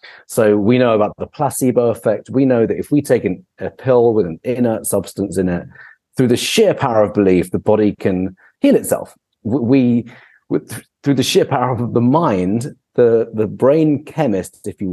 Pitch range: 100-125 Hz